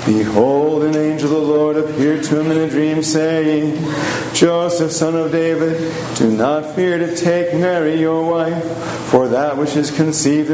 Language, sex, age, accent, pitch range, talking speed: English, male, 40-59, American, 150-165 Hz, 170 wpm